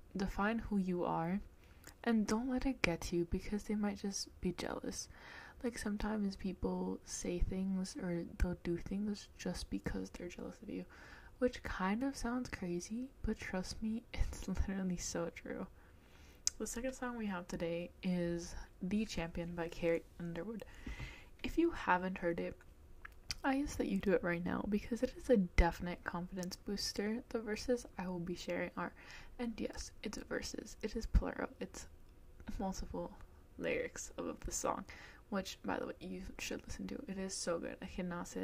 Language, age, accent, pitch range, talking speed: English, 20-39, American, 175-220 Hz, 170 wpm